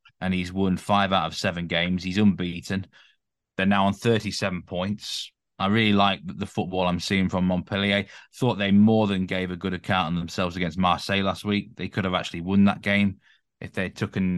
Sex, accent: male, British